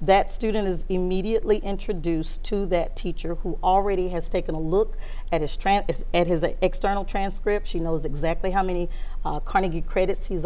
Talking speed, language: 170 wpm, English